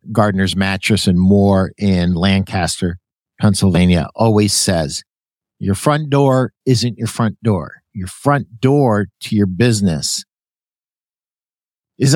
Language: English